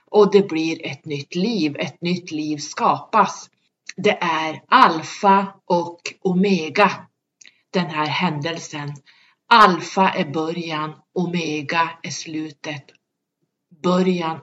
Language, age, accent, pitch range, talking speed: Swedish, 30-49, native, 155-185 Hz, 105 wpm